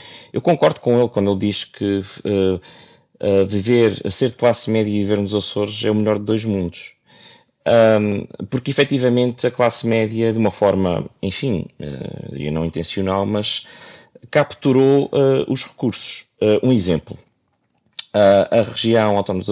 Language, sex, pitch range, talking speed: Portuguese, male, 100-125 Hz, 160 wpm